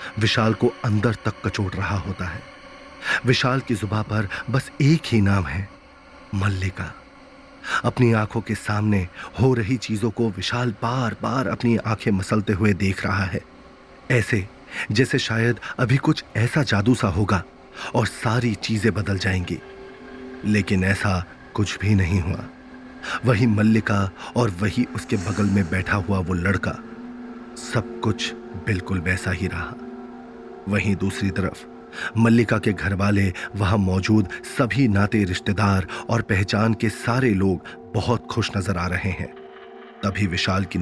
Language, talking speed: Hindi, 145 wpm